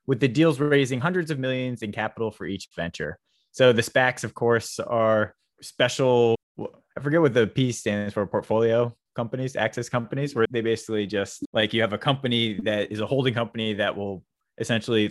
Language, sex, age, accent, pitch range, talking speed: English, male, 20-39, American, 105-125 Hz, 185 wpm